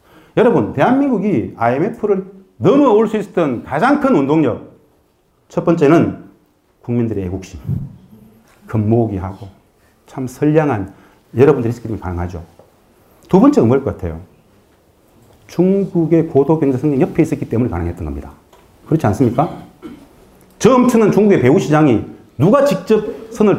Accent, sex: native, male